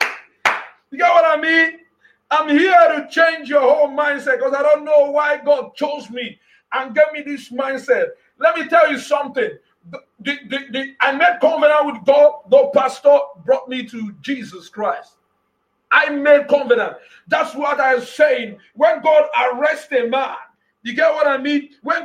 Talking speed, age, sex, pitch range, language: 165 wpm, 50-69, male, 260-315 Hz, English